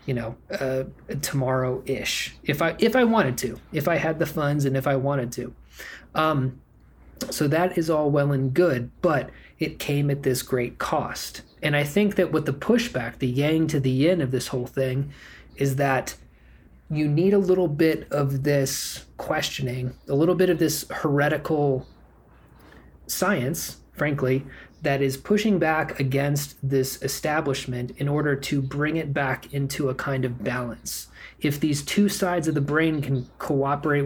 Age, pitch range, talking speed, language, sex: 20-39, 130-155 Hz, 170 wpm, English, male